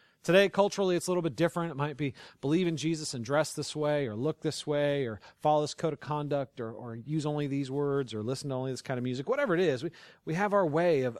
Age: 40-59